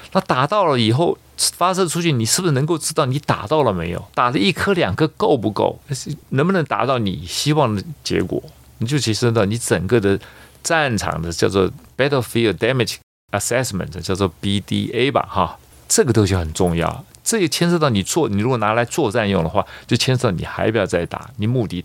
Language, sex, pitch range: Chinese, male, 95-140 Hz